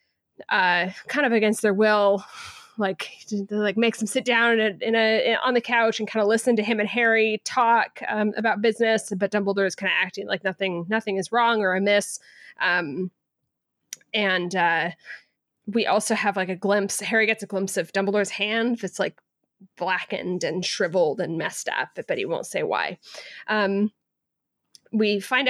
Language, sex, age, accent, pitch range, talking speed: English, female, 20-39, American, 190-230 Hz, 180 wpm